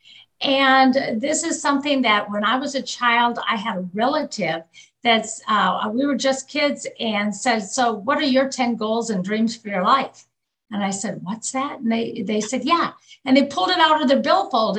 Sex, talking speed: female, 205 wpm